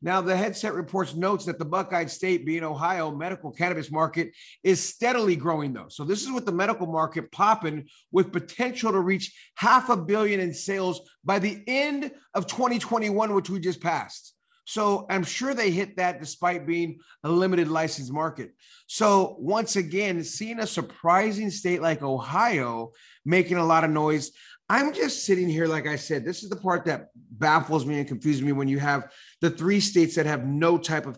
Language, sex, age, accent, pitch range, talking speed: English, male, 30-49, American, 160-200 Hz, 190 wpm